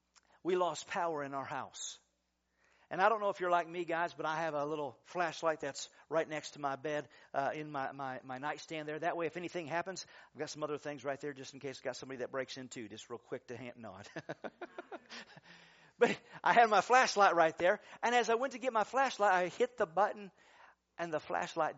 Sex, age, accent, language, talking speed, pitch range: male, 50-69, American, English, 230 wpm, 145-200 Hz